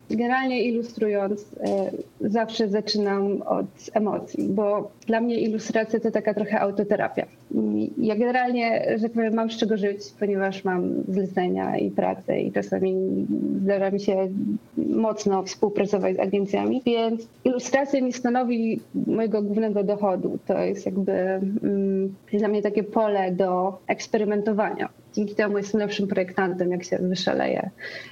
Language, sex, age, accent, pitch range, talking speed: Polish, female, 30-49, native, 195-230 Hz, 130 wpm